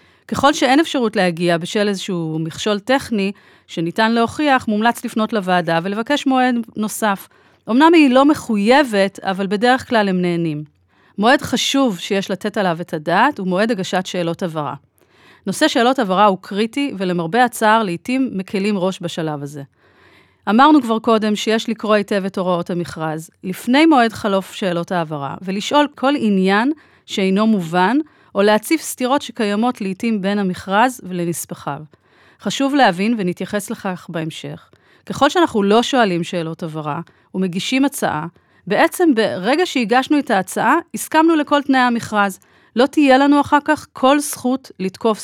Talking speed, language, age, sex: 140 wpm, Hebrew, 30-49, female